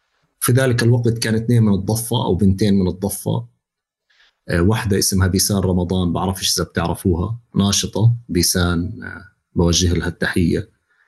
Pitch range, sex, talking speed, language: 90-120 Hz, male, 125 wpm, Arabic